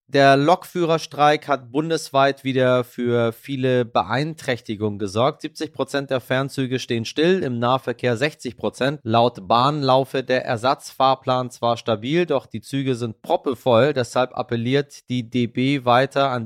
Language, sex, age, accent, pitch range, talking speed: German, male, 30-49, German, 115-140 Hz, 125 wpm